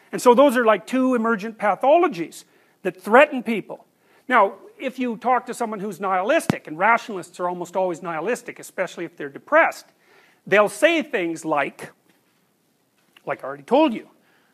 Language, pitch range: English, 175-225 Hz